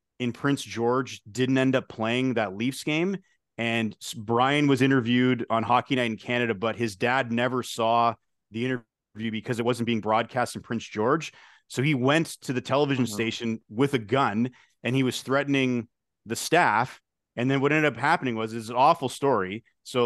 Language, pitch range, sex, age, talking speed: English, 115-130 Hz, male, 30-49, 190 wpm